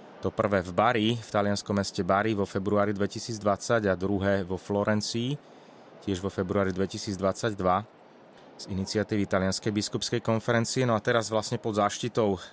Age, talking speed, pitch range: 30-49, 145 wpm, 95-110 Hz